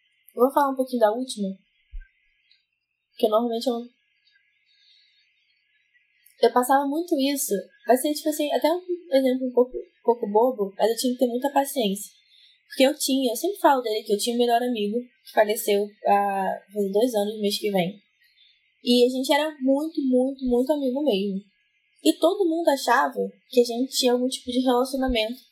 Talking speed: 180 wpm